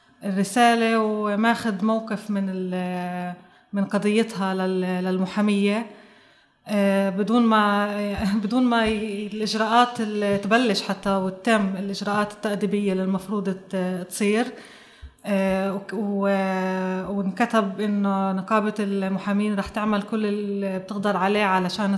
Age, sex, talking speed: 20-39, female, 90 wpm